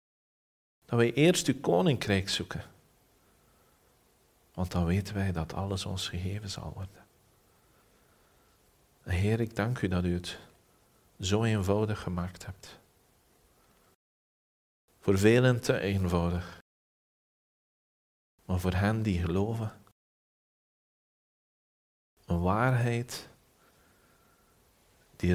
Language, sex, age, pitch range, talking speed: Dutch, male, 40-59, 90-115 Hz, 90 wpm